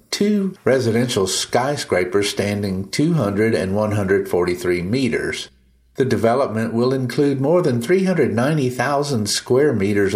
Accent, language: American, English